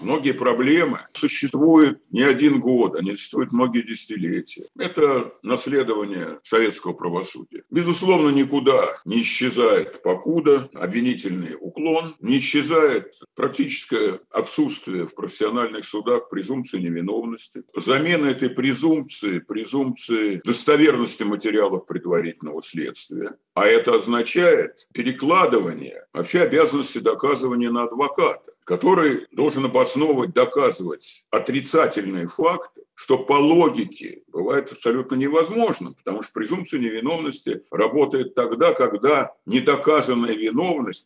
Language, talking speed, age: Russian, 100 wpm, 60-79